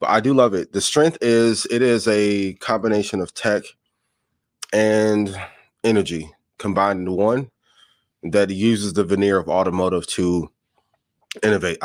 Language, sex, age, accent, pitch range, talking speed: English, male, 20-39, American, 95-115 Hz, 135 wpm